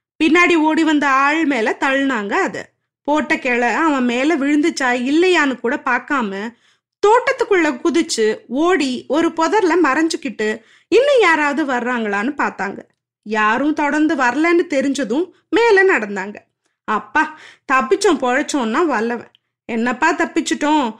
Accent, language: native, Tamil